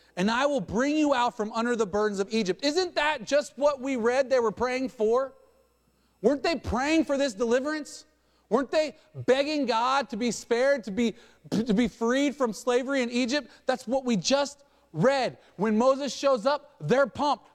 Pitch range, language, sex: 205-275 Hz, English, male